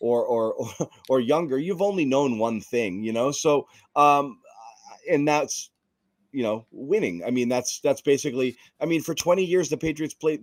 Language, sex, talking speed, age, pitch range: English, male, 180 wpm, 30-49, 125-170 Hz